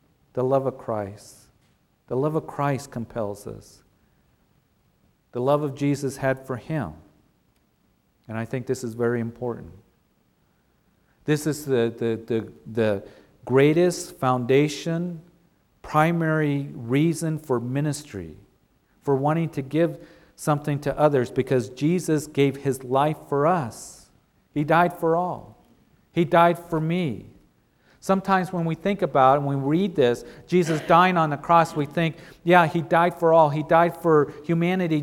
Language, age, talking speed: English, 50-69, 140 wpm